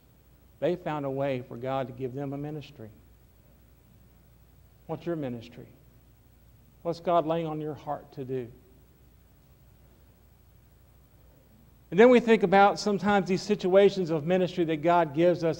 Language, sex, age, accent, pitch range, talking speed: English, male, 50-69, American, 125-170 Hz, 140 wpm